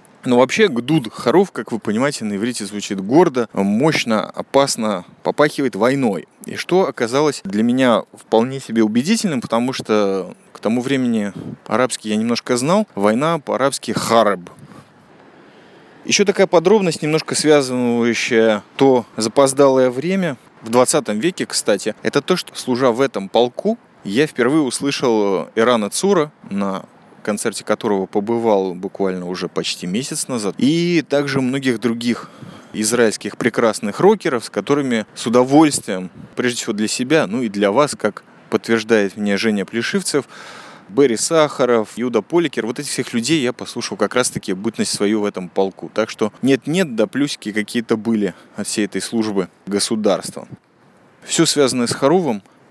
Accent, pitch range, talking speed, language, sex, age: native, 110-150 Hz, 145 wpm, Russian, male, 20-39